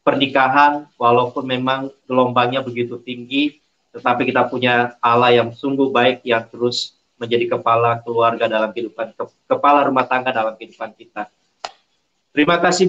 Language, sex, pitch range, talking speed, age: Malay, male, 130-155 Hz, 130 wpm, 40-59